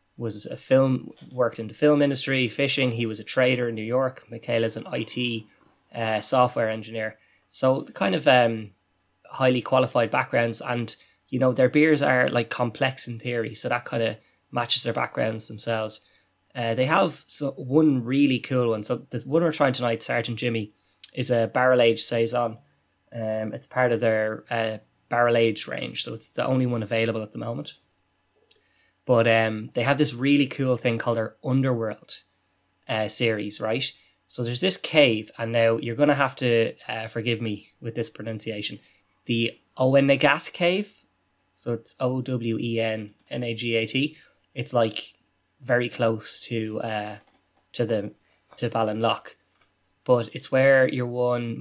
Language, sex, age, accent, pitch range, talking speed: English, male, 20-39, Irish, 110-130 Hz, 165 wpm